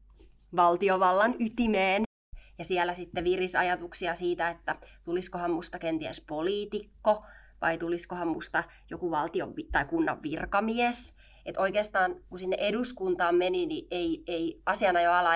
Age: 20-39